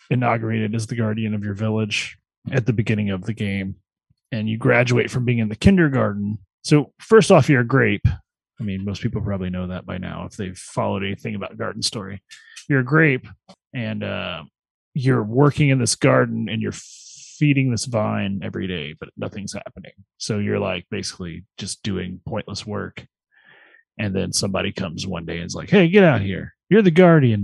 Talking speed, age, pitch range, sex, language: 190 wpm, 30-49, 100-135 Hz, male, English